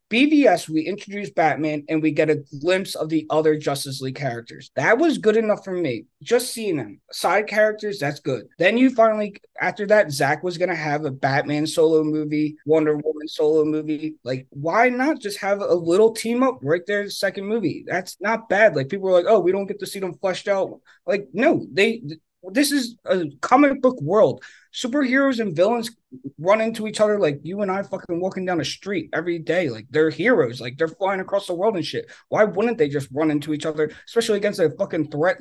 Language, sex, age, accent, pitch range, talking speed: English, male, 30-49, American, 150-205 Hz, 215 wpm